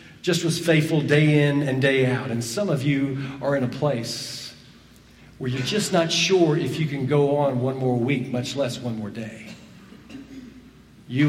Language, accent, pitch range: English, American, 130-160 Hz